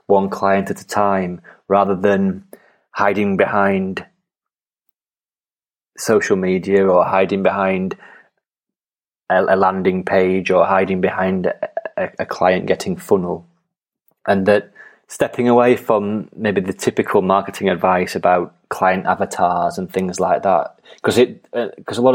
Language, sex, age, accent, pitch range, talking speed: English, male, 30-49, British, 95-105 Hz, 135 wpm